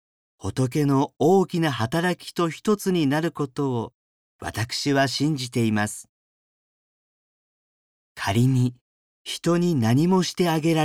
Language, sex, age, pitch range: Japanese, male, 40-59, 115-170 Hz